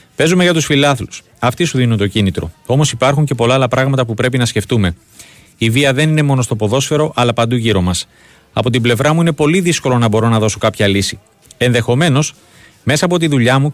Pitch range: 110-140 Hz